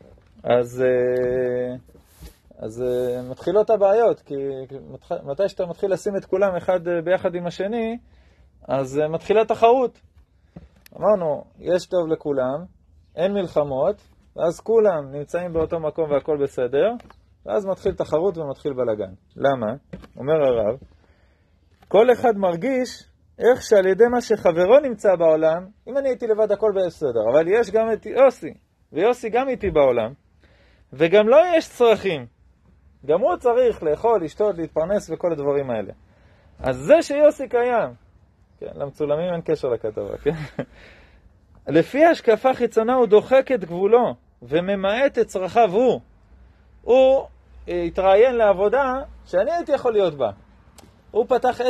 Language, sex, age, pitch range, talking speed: Hebrew, male, 30-49, 140-230 Hz, 130 wpm